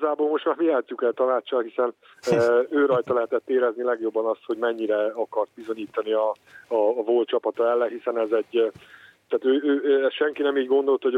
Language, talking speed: Hungarian, 190 wpm